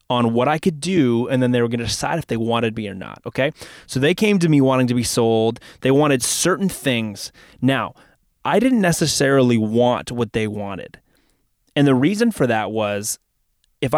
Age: 20-39